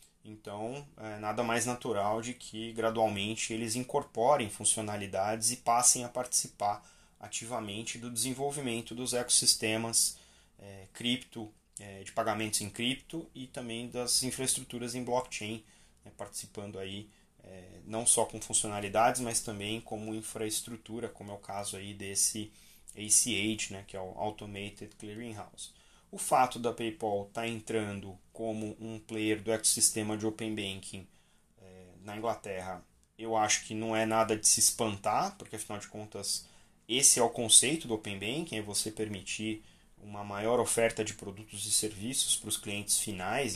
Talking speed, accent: 150 wpm, Brazilian